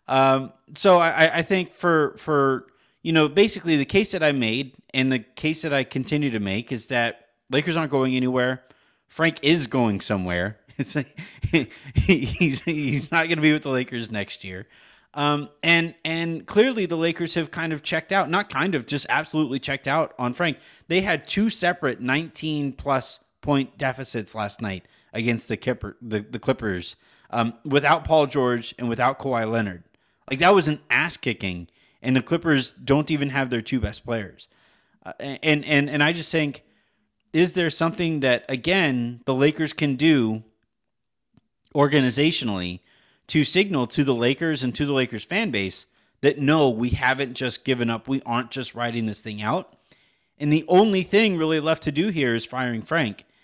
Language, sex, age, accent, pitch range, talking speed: English, male, 30-49, American, 120-160 Hz, 180 wpm